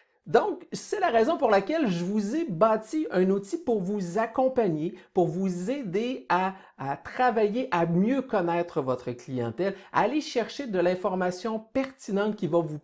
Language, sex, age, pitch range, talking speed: French, male, 60-79, 170-245 Hz, 165 wpm